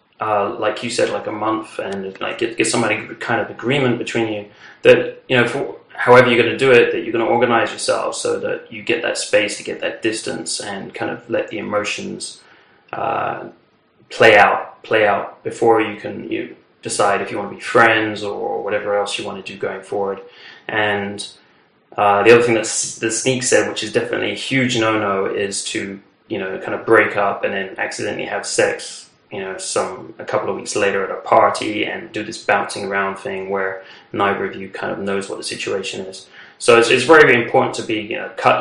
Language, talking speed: English, 220 wpm